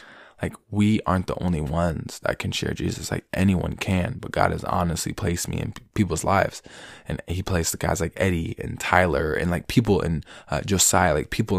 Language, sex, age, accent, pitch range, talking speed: English, male, 20-39, American, 85-105 Hz, 200 wpm